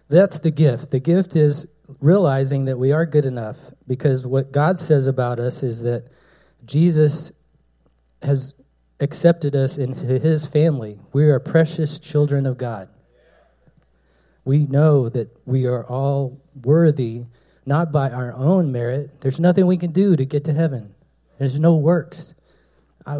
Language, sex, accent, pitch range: Korean, male, American, 130-155 Hz